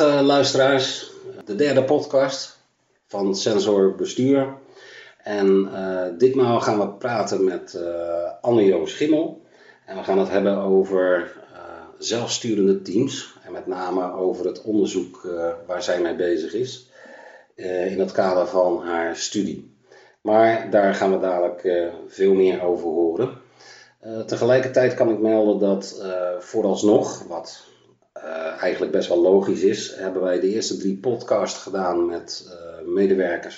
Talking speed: 145 wpm